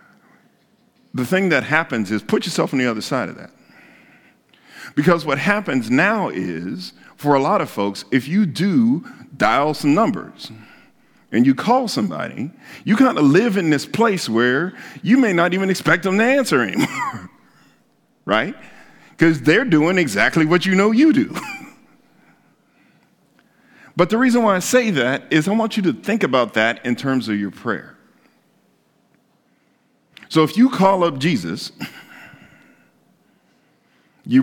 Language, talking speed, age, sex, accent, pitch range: English, 150 wpm, 50-69, male, American, 135-210 Hz